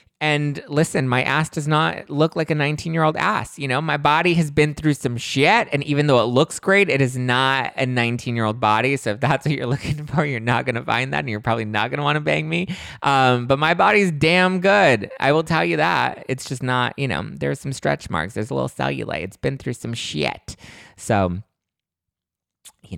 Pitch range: 105-150 Hz